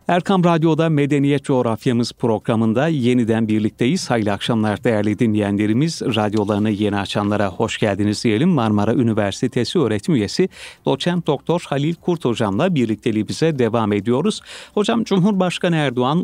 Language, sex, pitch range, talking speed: Turkish, male, 110-145 Hz, 120 wpm